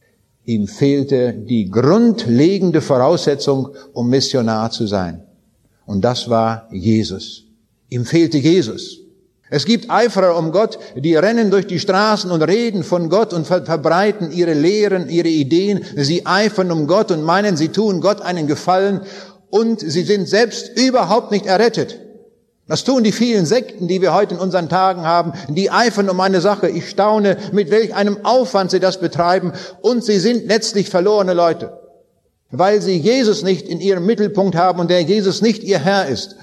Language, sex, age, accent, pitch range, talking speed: German, male, 60-79, German, 150-200 Hz, 165 wpm